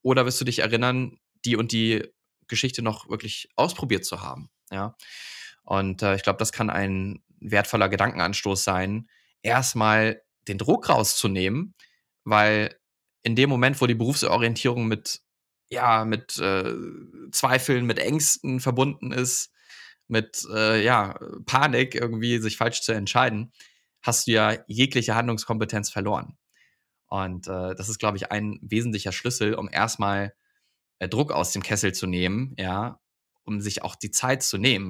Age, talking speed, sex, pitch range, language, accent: 20-39, 150 wpm, male, 95-115 Hz, German, German